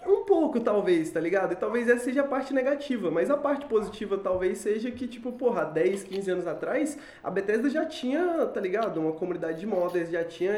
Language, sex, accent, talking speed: Portuguese, male, Brazilian, 210 wpm